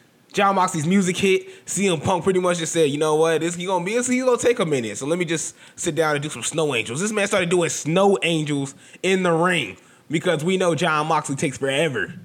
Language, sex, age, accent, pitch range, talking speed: English, male, 20-39, American, 120-160 Hz, 245 wpm